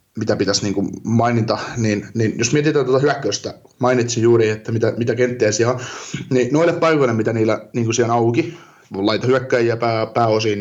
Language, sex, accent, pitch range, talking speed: Finnish, male, native, 110-125 Hz, 155 wpm